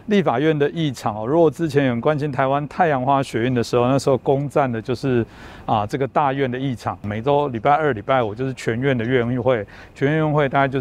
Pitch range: 115-145 Hz